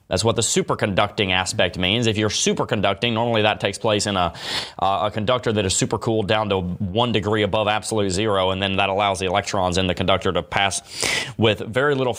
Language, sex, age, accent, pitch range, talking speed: English, male, 20-39, American, 105-130 Hz, 205 wpm